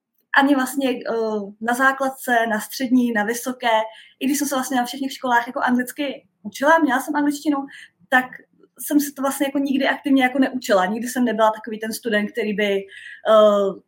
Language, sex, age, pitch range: Czech, female, 20-39, 205-255 Hz